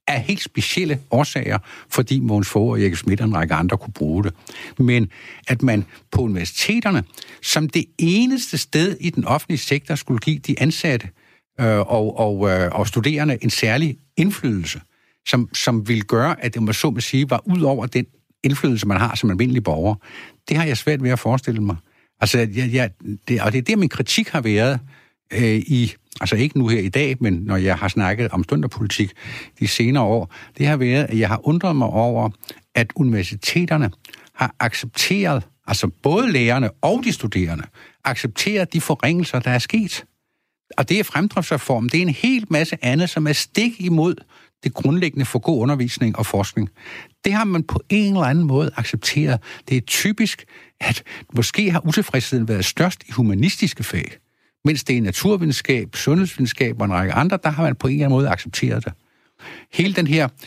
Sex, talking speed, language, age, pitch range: male, 185 wpm, Danish, 60-79, 110-155 Hz